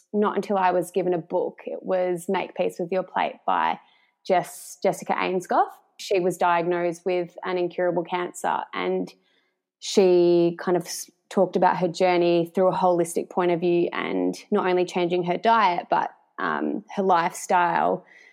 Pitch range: 175-195 Hz